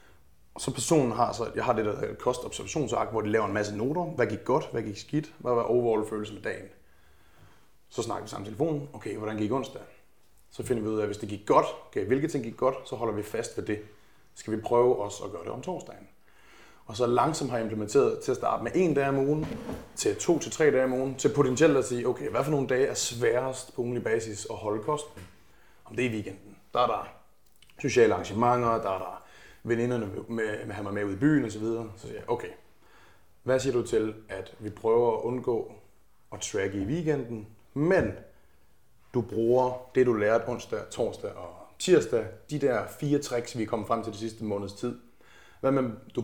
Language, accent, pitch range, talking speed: Danish, native, 105-140 Hz, 220 wpm